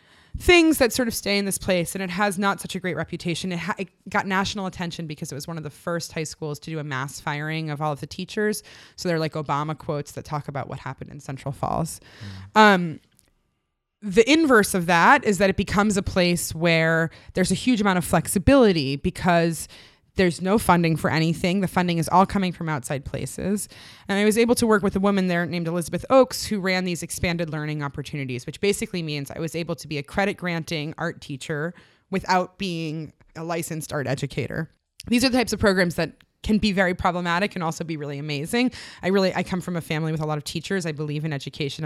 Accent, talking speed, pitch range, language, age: American, 220 wpm, 150-195 Hz, English, 20-39